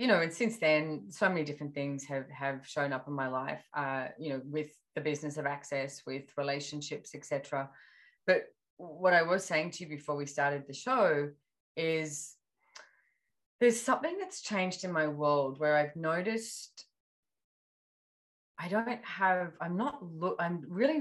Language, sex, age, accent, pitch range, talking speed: English, female, 20-39, Australian, 140-175 Hz, 170 wpm